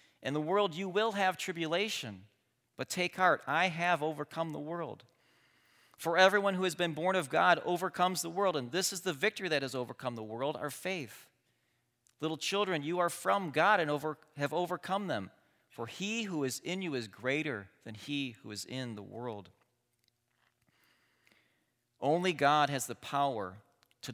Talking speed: 170 wpm